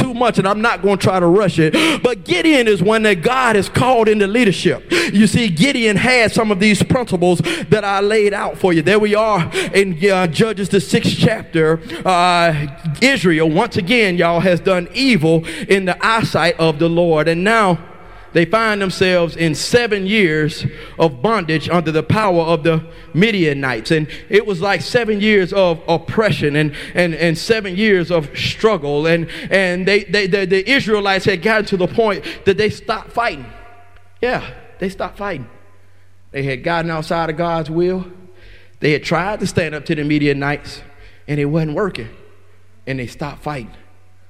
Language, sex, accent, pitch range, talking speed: English, male, American, 150-205 Hz, 180 wpm